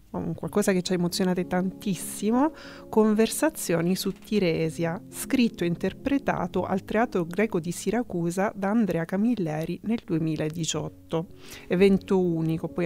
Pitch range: 175-220 Hz